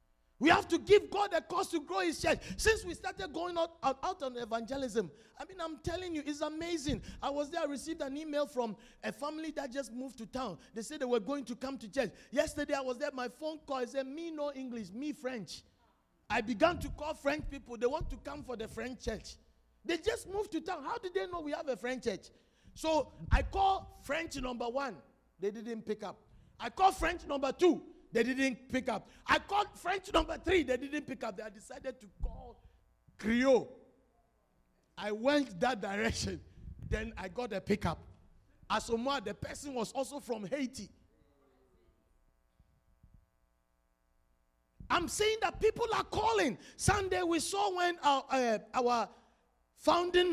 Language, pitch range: English, 230-325 Hz